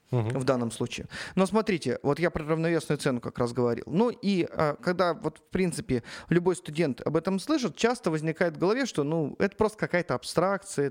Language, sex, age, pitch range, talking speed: Russian, male, 20-39, 135-180 Hz, 185 wpm